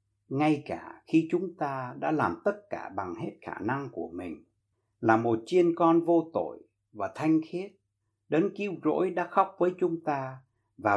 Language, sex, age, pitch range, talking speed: Vietnamese, male, 60-79, 105-170 Hz, 180 wpm